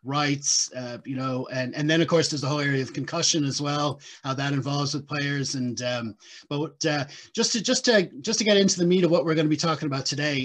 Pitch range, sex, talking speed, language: 135-165 Hz, male, 260 wpm, English